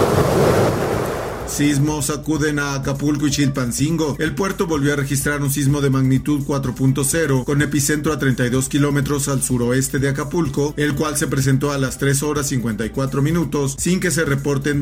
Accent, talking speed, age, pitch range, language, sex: Mexican, 160 wpm, 40-59, 130-150 Hz, Spanish, male